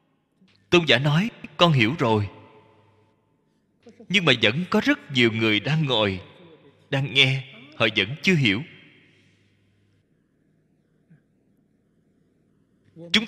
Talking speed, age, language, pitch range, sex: 100 wpm, 20-39, Vietnamese, 110-155 Hz, male